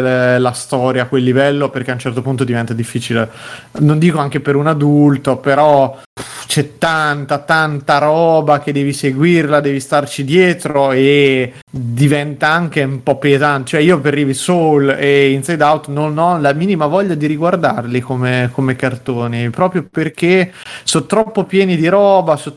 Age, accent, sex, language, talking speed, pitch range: 30-49, native, male, Italian, 160 wpm, 135-170 Hz